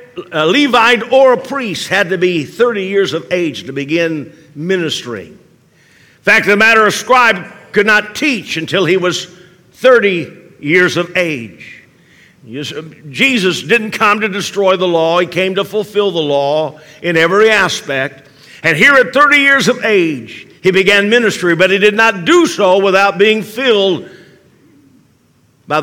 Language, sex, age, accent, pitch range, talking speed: English, male, 50-69, American, 160-220 Hz, 155 wpm